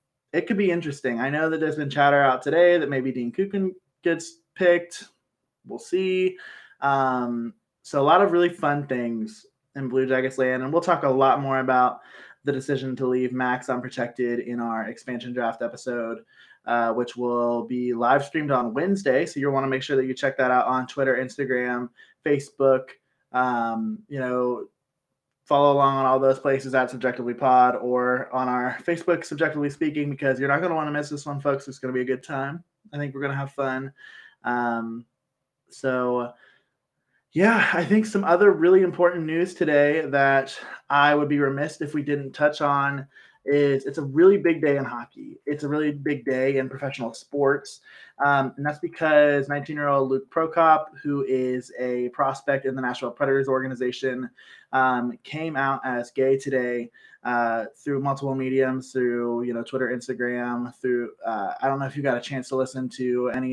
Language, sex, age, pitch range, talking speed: English, male, 20-39, 125-145 Hz, 190 wpm